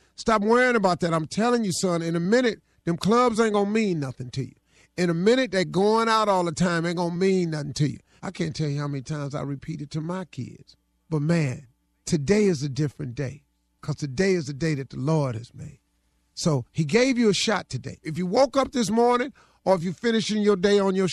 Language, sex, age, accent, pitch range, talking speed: English, male, 40-59, American, 155-220 Hz, 240 wpm